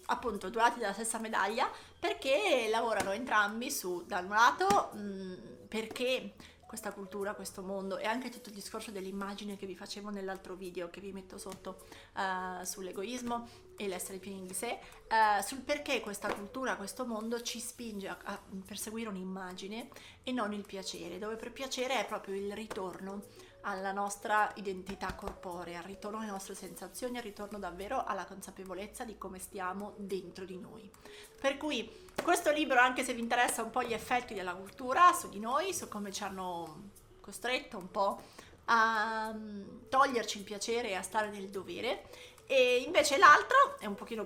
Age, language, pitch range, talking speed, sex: 30-49, Italian, 195-240 Hz, 165 wpm, female